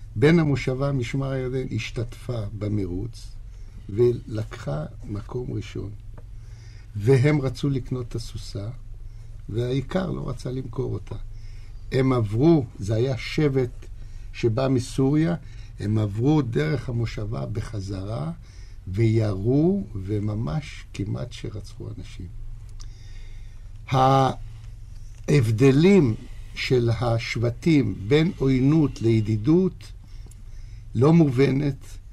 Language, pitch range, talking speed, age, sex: Hebrew, 105-135 Hz, 80 wpm, 60-79, male